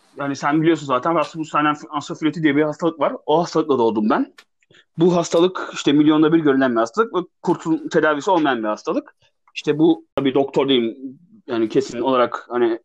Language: Turkish